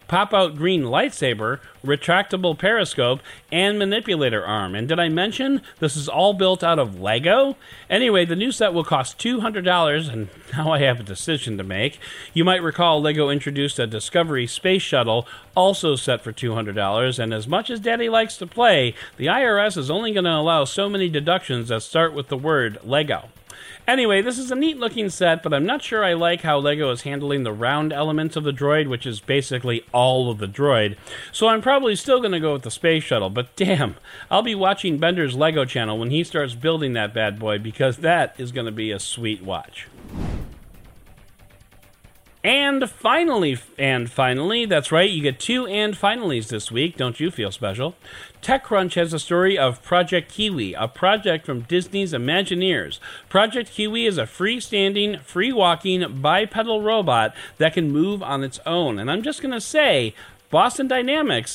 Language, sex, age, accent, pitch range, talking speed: English, male, 40-59, American, 125-195 Hz, 180 wpm